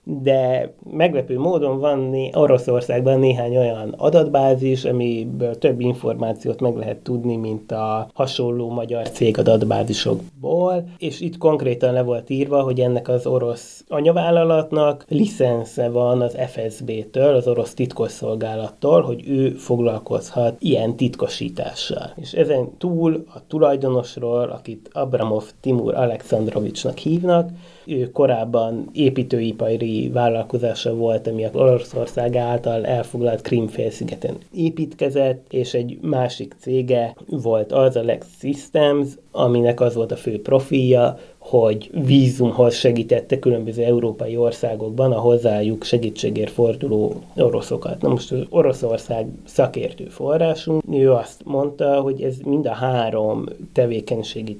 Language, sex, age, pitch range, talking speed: Hungarian, male, 30-49, 115-140 Hz, 120 wpm